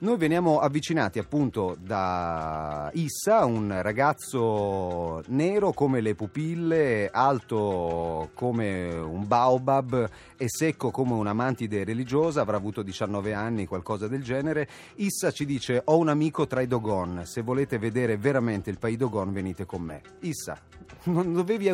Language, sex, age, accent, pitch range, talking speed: Italian, male, 30-49, native, 100-145 Hz, 140 wpm